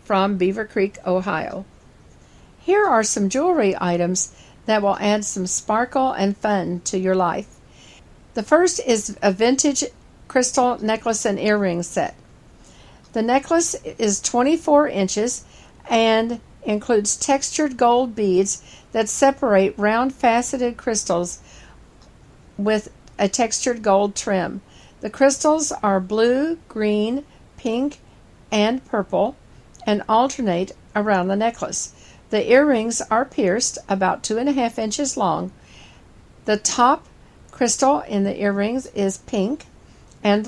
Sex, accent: female, American